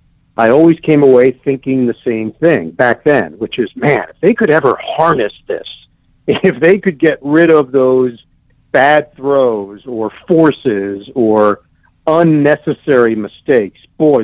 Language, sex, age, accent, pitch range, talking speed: English, male, 50-69, American, 115-145 Hz, 145 wpm